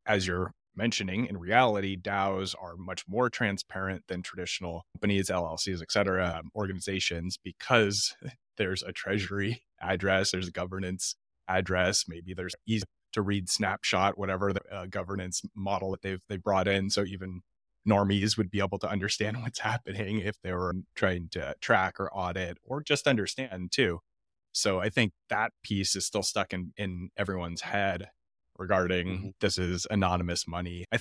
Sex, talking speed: male, 160 wpm